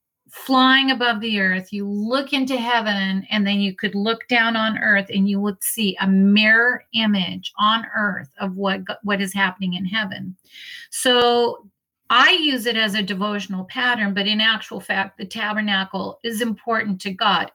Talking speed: 170 wpm